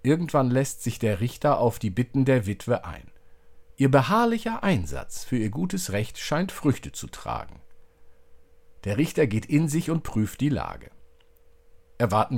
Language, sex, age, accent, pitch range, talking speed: German, male, 50-69, German, 95-150 Hz, 155 wpm